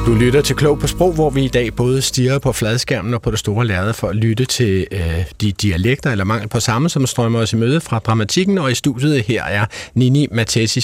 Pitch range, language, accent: 110-145 Hz, Danish, native